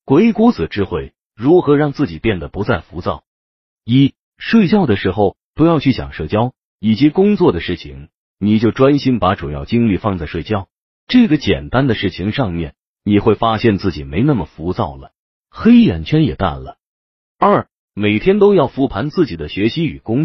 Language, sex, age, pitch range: Chinese, male, 30-49, 90-140 Hz